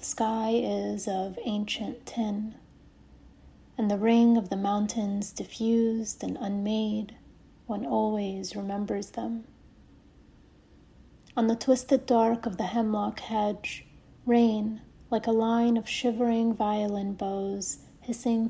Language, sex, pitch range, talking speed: English, female, 205-235 Hz, 115 wpm